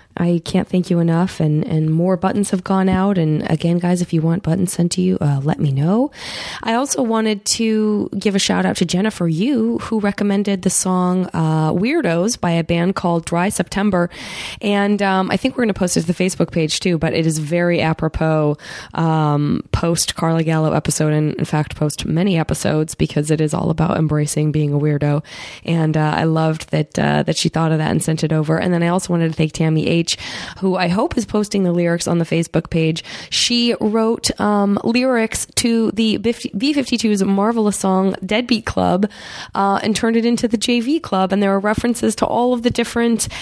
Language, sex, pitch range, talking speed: English, female, 160-210 Hz, 210 wpm